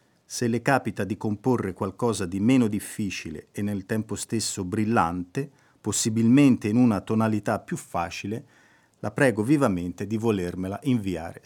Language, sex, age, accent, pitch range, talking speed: Italian, male, 40-59, native, 100-130 Hz, 135 wpm